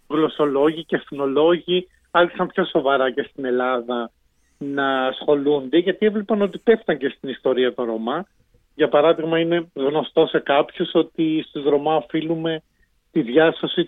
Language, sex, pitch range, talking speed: Greek, male, 140-175 Hz, 140 wpm